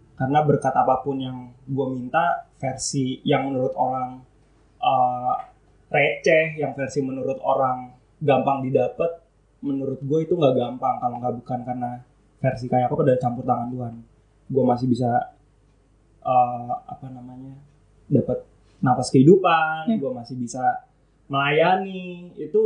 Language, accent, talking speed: English, Indonesian, 125 wpm